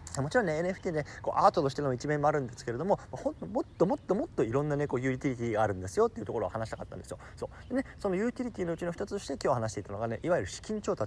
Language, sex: Japanese, male